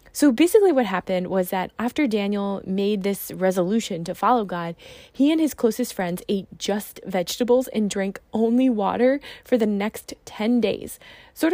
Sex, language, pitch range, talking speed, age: female, English, 195-250 Hz, 165 wpm, 20-39